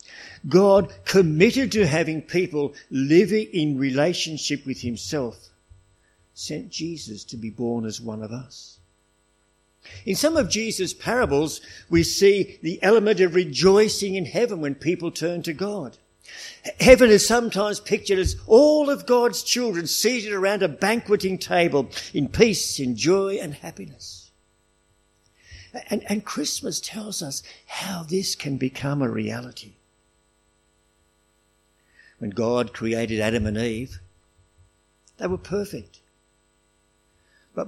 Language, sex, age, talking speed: English, male, 60-79, 125 wpm